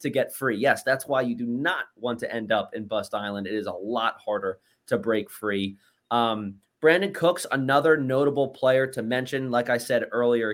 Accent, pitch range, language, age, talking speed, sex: American, 110-140 Hz, English, 20-39, 205 wpm, male